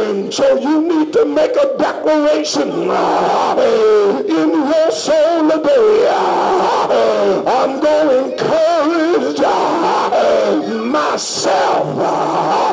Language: English